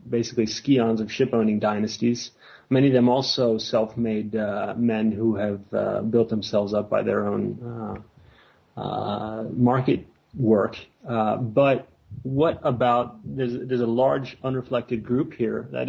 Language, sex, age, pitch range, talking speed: English, male, 30-49, 110-125 Hz, 145 wpm